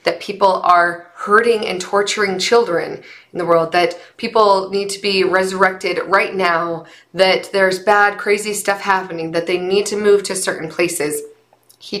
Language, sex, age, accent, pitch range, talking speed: English, female, 20-39, American, 180-230 Hz, 165 wpm